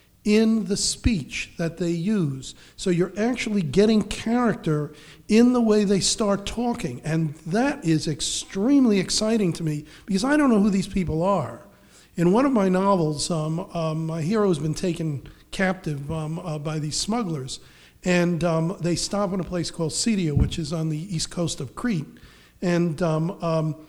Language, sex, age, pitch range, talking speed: English, male, 50-69, 160-205 Hz, 175 wpm